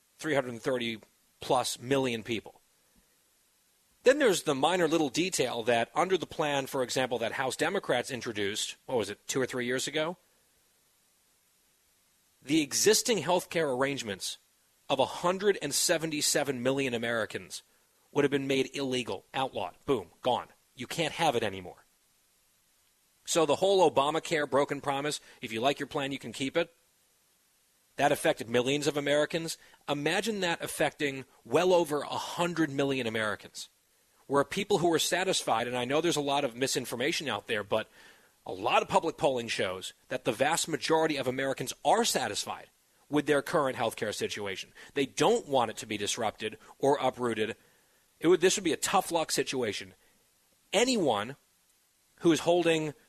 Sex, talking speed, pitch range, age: male, 155 wpm, 130-165 Hz, 40-59